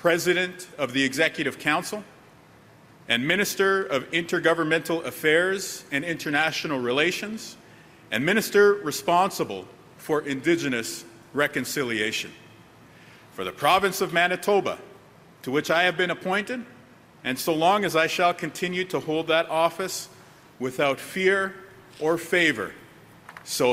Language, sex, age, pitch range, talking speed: Filipino, male, 50-69, 155-205 Hz, 115 wpm